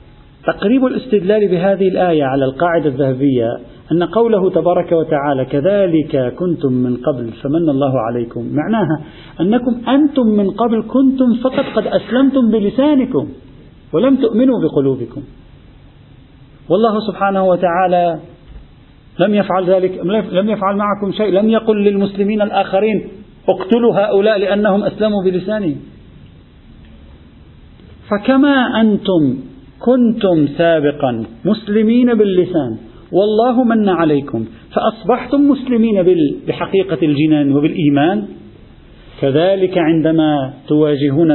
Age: 50-69